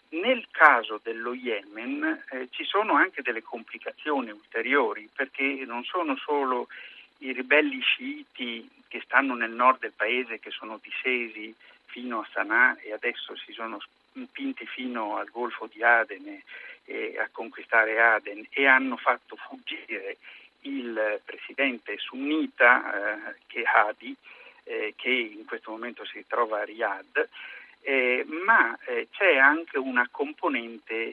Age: 50-69